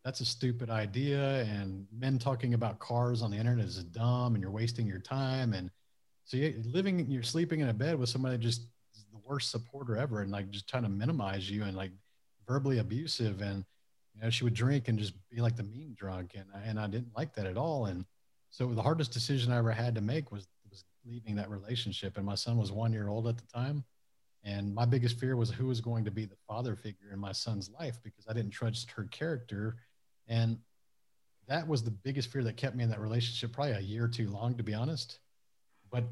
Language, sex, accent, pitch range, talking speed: English, male, American, 105-120 Hz, 230 wpm